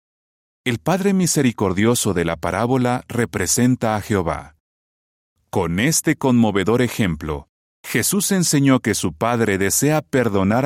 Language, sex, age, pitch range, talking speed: Spanish, male, 40-59, 85-125 Hz, 115 wpm